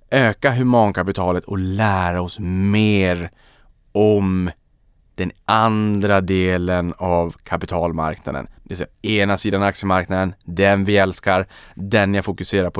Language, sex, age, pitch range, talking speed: Swedish, male, 20-39, 85-95 Hz, 115 wpm